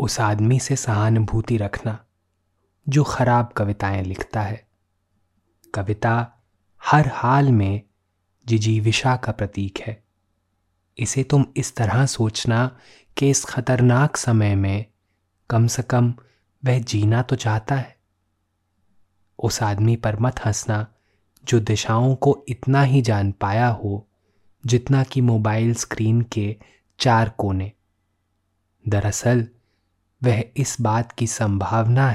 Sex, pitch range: male, 100-120 Hz